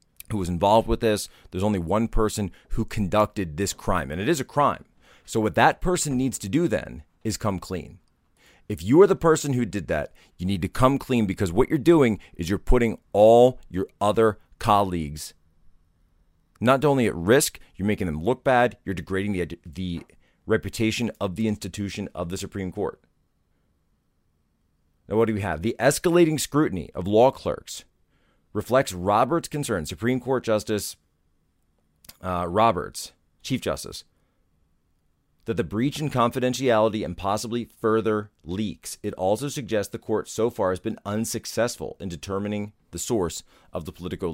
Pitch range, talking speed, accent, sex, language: 85-120 Hz, 165 wpm, American, male, English